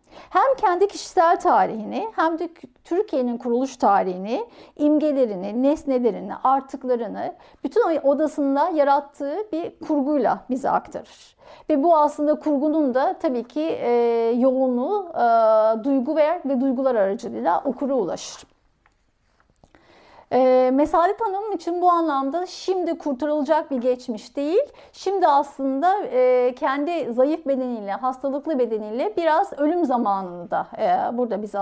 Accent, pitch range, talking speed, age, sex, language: native, 250-315 Hz, 110 wpm, 50-69, female, Turkish